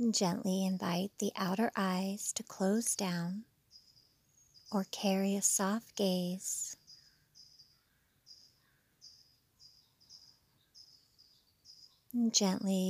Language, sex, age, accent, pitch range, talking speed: English, female, 30-49, American, 175-200 Hz, 65 wpm